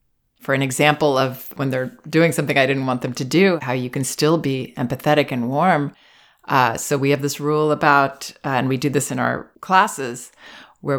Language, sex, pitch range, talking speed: English, female, 135-165 Hz, 205 wpm